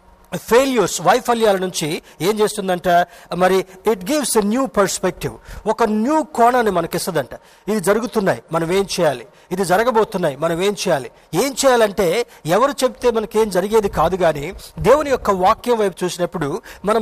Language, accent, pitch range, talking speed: Telugu, native, 180-240 Hz, 140 wpm